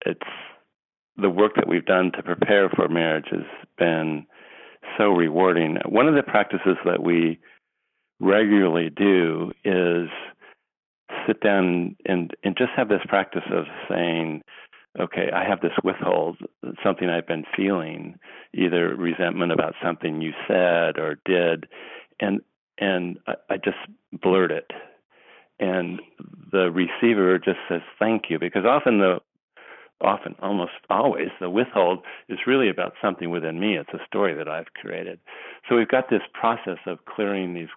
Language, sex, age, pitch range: English, male, 50-69, 85-100 Hz